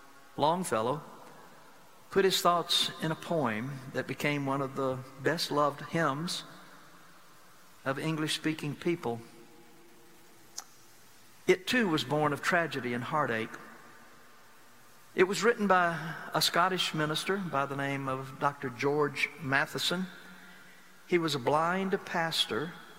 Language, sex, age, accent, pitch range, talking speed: English, male, 60-79, American, 135-170 Hz, 115 wpm